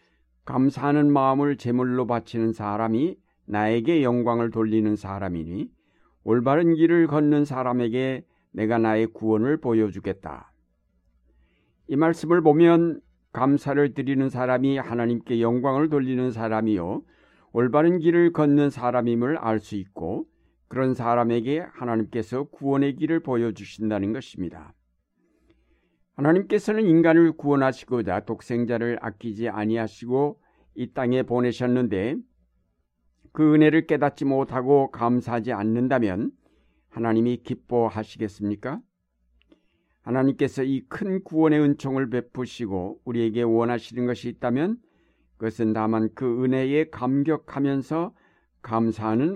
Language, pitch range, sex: Korean, 110-145 Hz, male